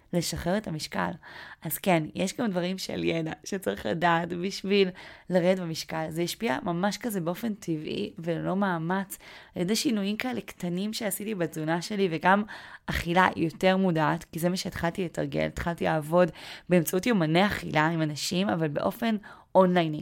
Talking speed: 150 wpm